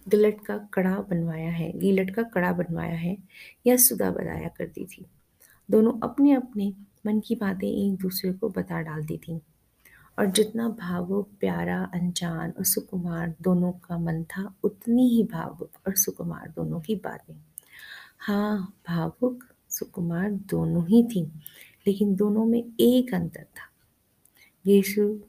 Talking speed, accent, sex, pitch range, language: 140 wpm, native, female, 180-215 Hz, Hindi